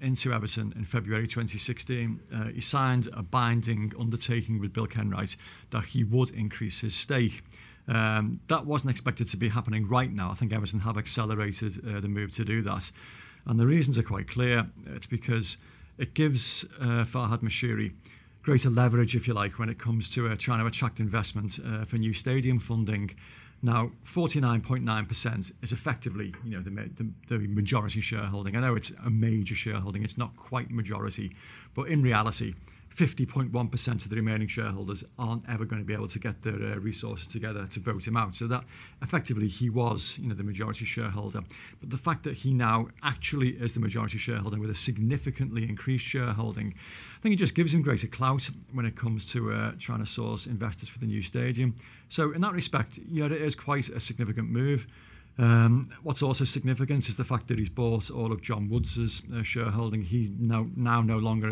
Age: 50-69